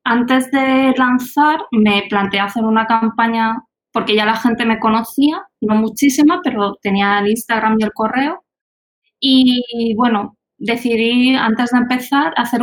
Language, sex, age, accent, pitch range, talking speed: Spanish, female, 20-39, Spanish, 210-250 Hz, 145 wpm